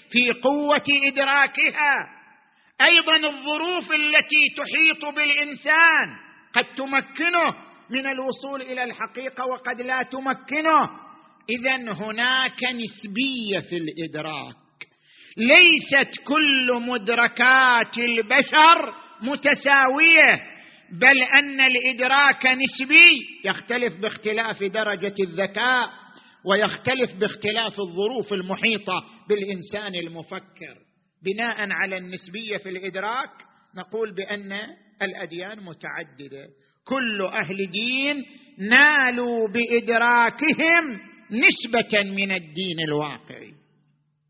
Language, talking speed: Arabic, 80 wpm